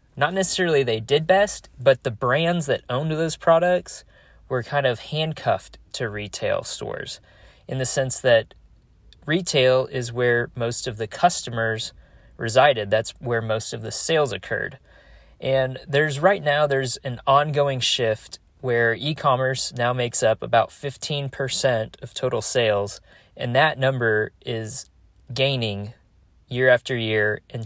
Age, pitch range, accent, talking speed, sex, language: 20-39, 105-135 Hz, American, 140 wpm, male, English